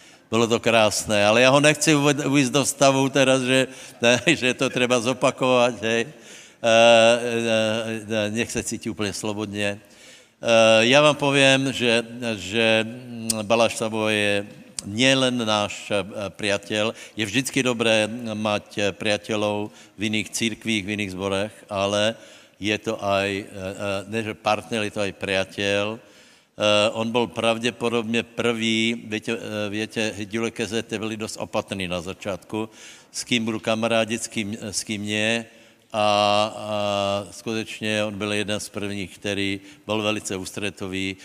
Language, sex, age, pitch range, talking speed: Slovak, male, 60-79, 100-115 Hz, 130 wpm